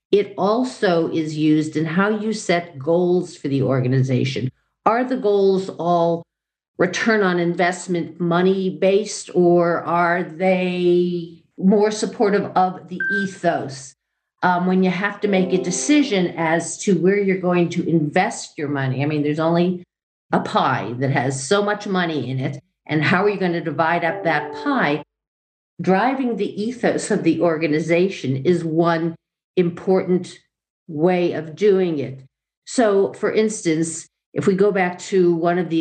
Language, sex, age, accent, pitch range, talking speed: English, female, 50-69, American, 155-190 Hz, 155 wpm